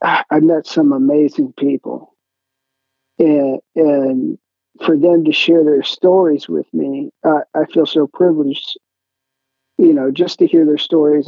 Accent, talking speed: American, 145 wpm